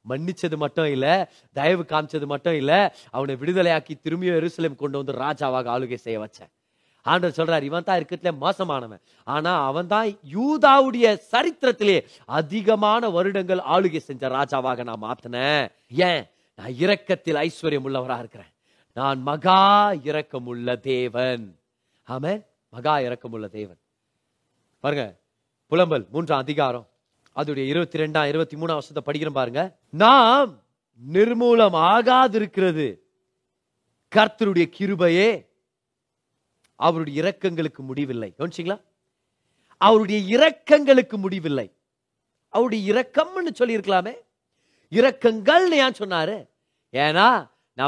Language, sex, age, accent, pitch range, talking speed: Tamil, male, 30-49, native, 135-210 Hz, 85 wpm